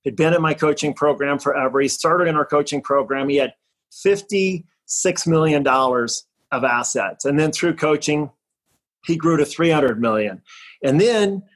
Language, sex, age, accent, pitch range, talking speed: English, male, 40-59, American, 140-170 Hz, 155 wpm